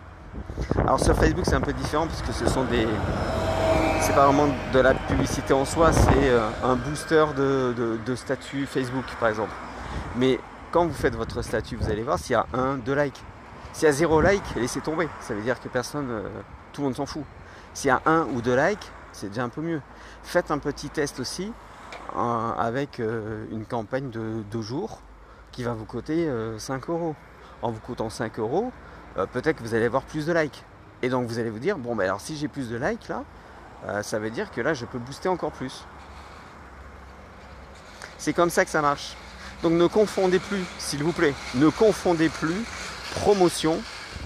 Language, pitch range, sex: French, 110-155 Hz, male